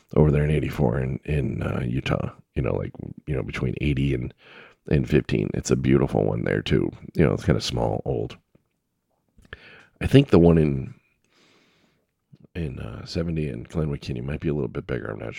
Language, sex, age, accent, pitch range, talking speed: English, male, 40-59, American, 70-85 Hz, 195 wpm